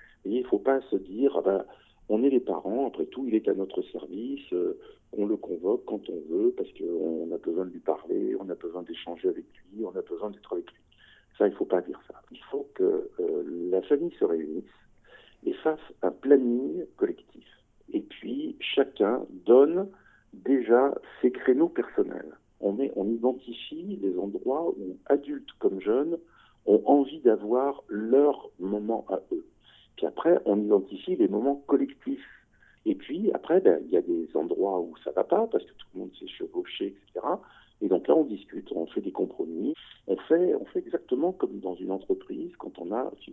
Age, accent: 50-69, French